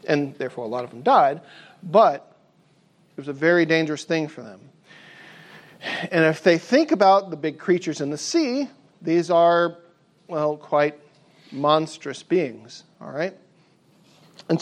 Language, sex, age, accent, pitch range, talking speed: English, male, 40-59, American, 150-185 Hz, 150 wpm